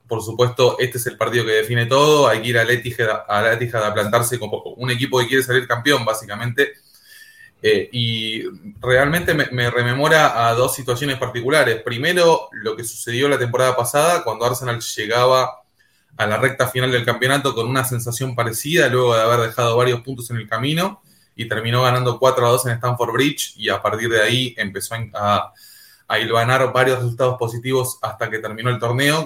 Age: 20-39